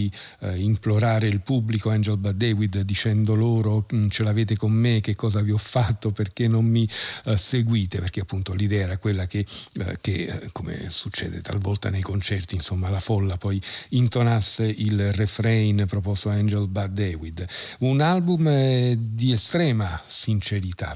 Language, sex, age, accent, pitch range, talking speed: Italian, male, 50-69, native, 100-120 Hz, 155 wpm